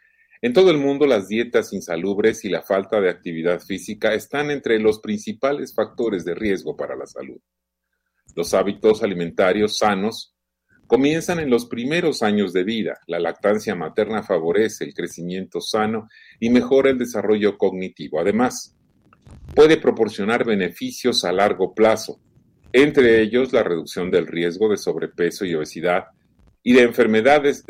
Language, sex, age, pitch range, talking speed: Spanish, male, 40-59, 95-135 Hz, 145 wpm